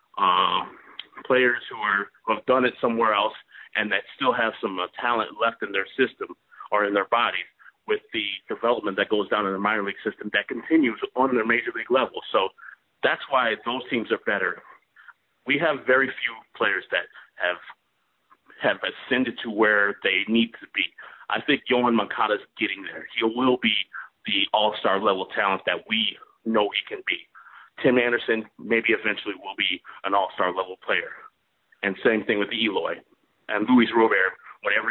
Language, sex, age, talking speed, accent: English, male, 40-59, 180 wpm, American